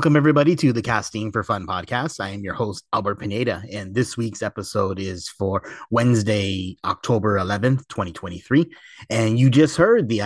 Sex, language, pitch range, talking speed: male, English, 100-125 Hz, 170 wpm